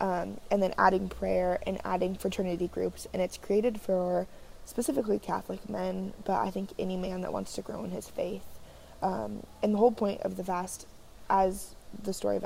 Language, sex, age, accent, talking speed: English, female, 20-39, American, 195 wpm